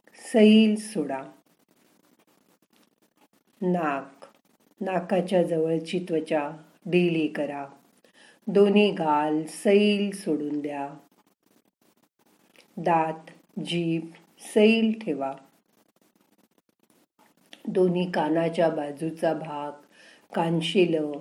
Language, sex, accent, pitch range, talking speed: Marathi, female, native, 155-205 Hz, 60 wpm